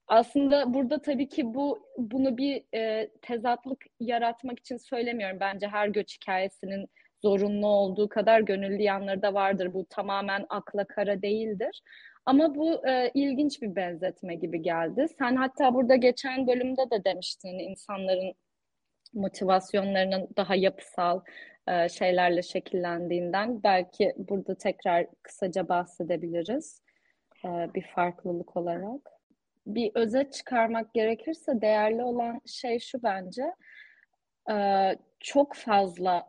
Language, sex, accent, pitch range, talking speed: Turkish, female, native, 190-255 Hz, 115 wpm